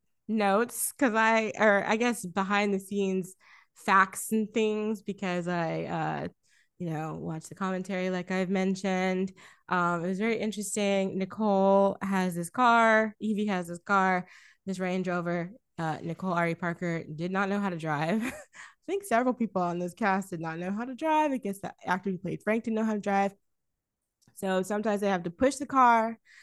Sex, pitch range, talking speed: female, 175-215 Hz, 185 wpm